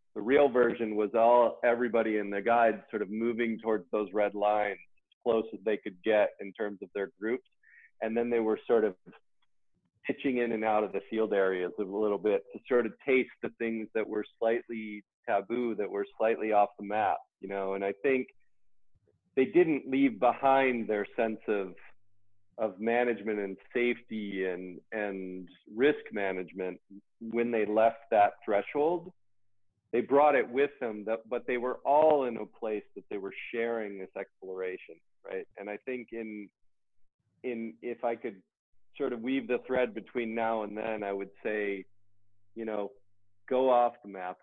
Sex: male